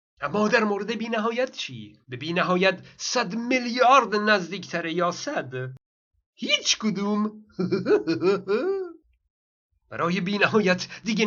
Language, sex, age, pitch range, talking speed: Persian, male, 50-69, 180-245 Hz, 90 wpm